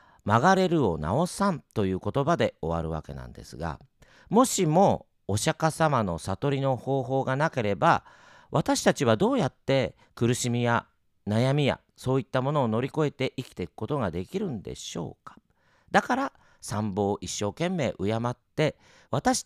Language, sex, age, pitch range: Japanese, male, 40-59, 120-185 Hz